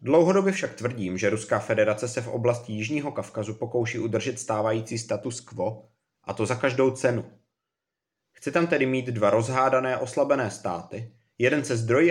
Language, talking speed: Czech, 160 wpm